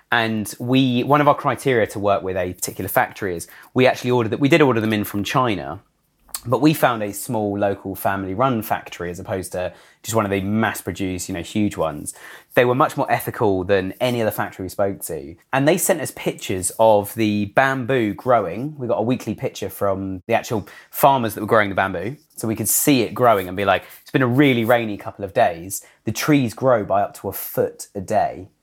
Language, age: English, 30-49